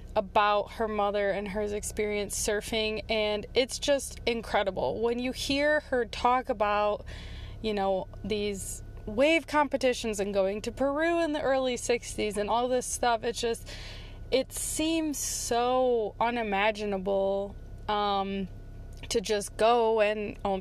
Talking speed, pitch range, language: 135 wpm, 210-260 Hz, English